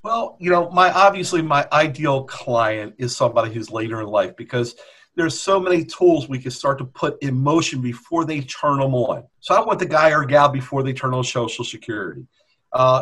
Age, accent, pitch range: 50-69, American, 130-160 Hz